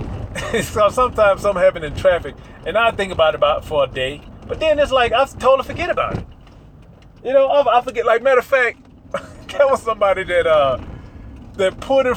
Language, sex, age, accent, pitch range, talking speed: English, male, 30-49, American, 160-250 Hz, 205 wpm